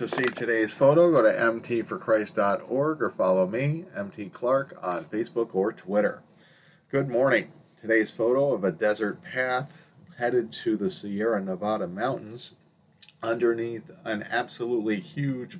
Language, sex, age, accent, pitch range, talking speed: English, male, 40-59, American, 105-140 Hz, 130 wpm